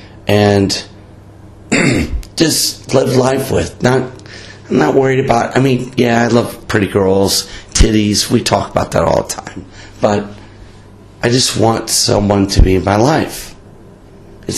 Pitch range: 100-115 Hz